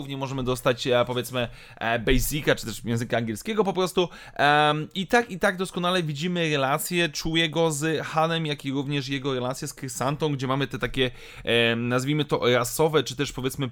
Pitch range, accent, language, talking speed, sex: 135-170 Hz, native, Polish, 160 wpm, male